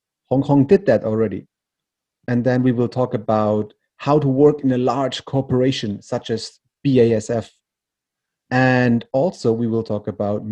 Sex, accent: male, German